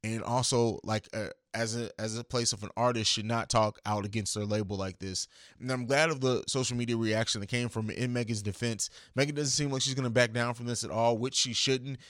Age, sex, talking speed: 20-39, male, 255 wpm